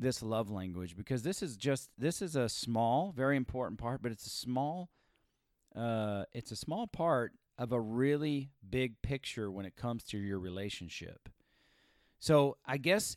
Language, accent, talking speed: English, American, 170 wpm